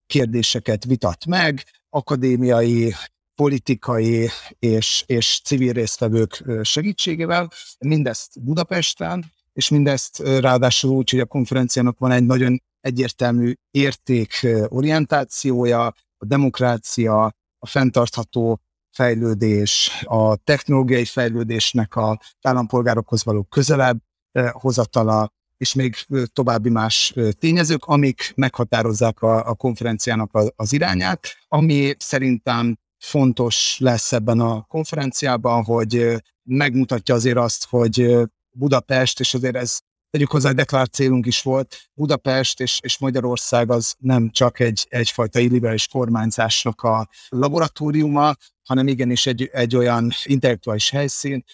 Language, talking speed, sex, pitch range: Hungarian, 105 wpm, male, 115-135 Hz